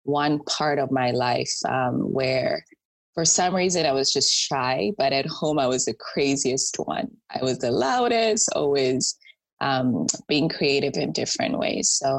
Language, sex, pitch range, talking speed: English, female, 130-150 Hz, 165 wpm